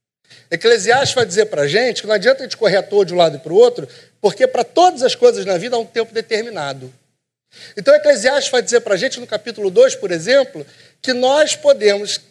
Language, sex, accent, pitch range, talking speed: Portuguese, male, Brazilian, 220-300 Hz, 230 wpm